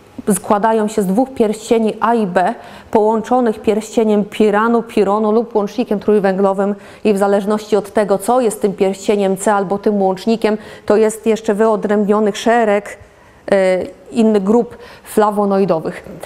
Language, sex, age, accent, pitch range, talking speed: Polish, female, 30-49, native, 210-255 Hz, 135 wpm